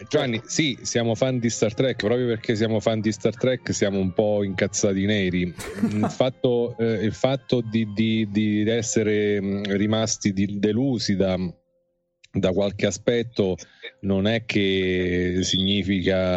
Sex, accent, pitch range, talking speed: male, native, 90-110 Hz, 130 wpm